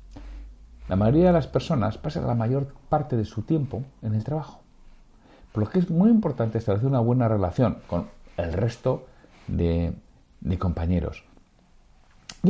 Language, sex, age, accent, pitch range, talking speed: Spanish, male, 60-79, Spanish, 100-155 Hz, 155 wpm